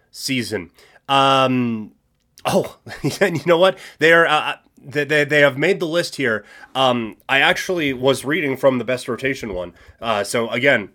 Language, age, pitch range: English, 30-49, 125-165 Hz